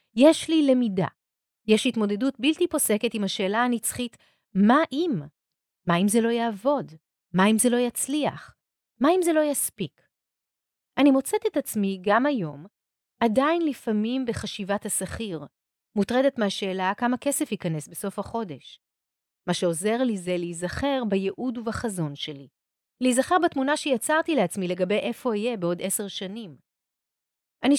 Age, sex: 30-49, female